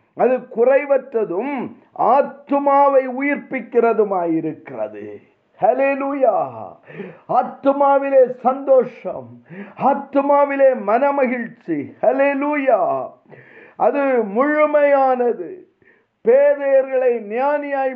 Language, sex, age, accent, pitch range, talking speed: Tamil, male, 50-69, native, 245-285 Hz, 45 wpm